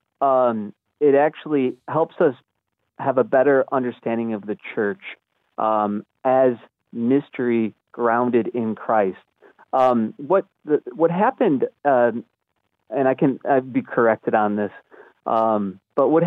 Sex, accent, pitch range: male, American, 110-135 Hz